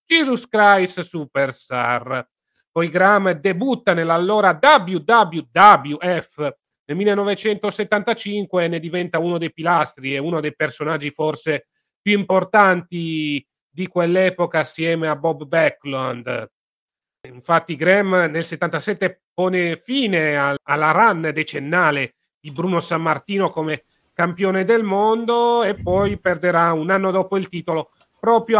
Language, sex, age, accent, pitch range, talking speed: Italian, male, 40-59, native, 155-195 Hz, 115 wpm